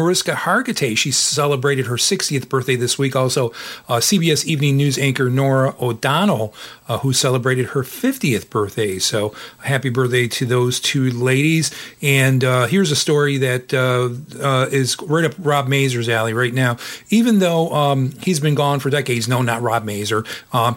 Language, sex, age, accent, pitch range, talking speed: English, male, 40-59, American, 120-140 Hz, 170 wpm